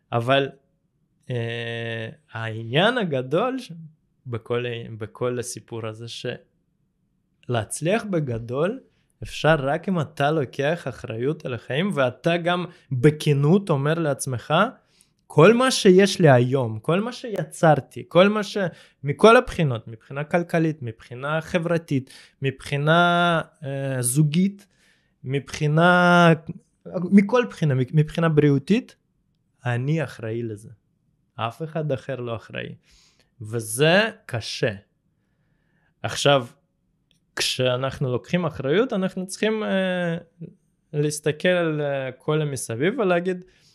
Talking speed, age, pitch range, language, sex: 95 wpm, 20-39, 130-175 Hz, Hebrew, male